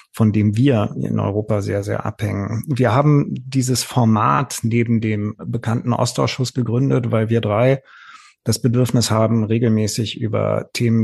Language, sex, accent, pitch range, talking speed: German, male, German, 110-125 Hz, 140 wpm